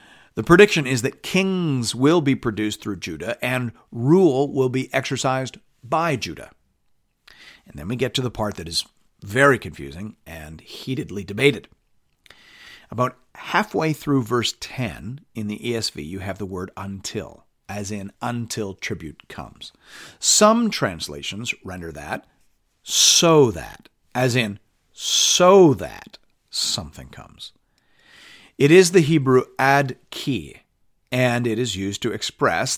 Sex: male